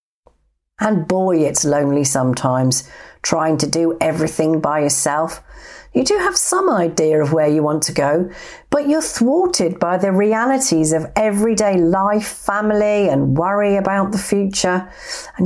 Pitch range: 145-210 Hz